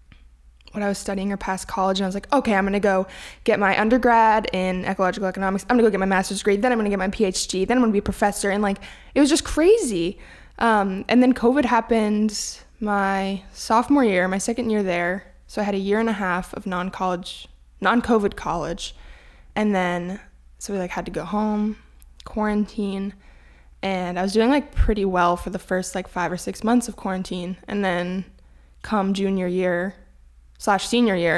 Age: 20-39